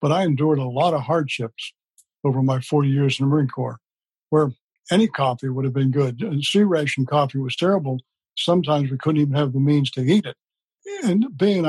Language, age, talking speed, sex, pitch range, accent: English, 60-79, 205 wpm, male, 135-160 Hz, American